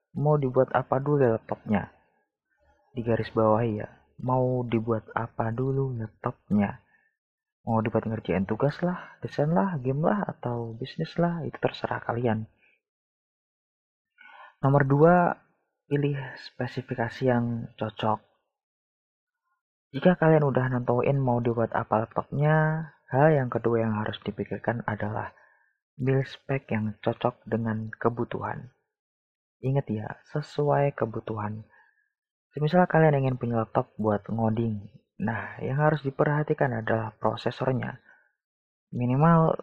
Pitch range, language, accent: 115-140 Hz, Indonesian, native